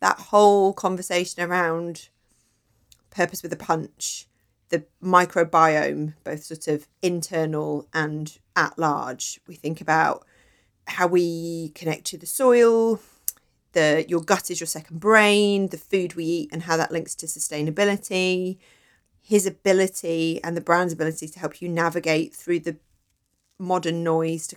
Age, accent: 30-49, British